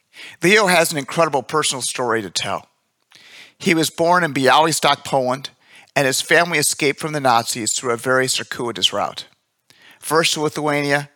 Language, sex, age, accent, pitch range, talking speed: English, male, 50-69, American, 130-160 Hz, 155 wpm